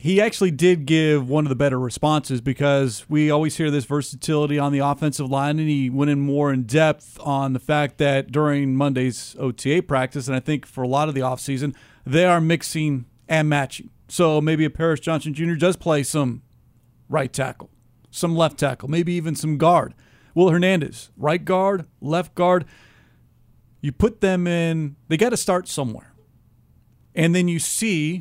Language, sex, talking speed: English, male, 180 wpm